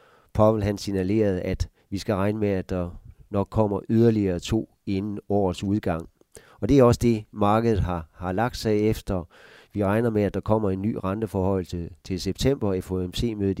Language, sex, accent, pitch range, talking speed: Danish, male, native, 95-110 Hz, 180 wpm